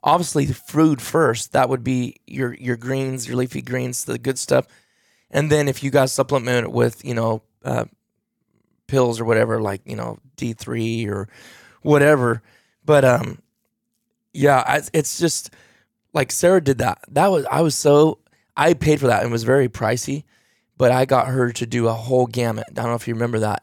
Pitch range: 120-155 Hz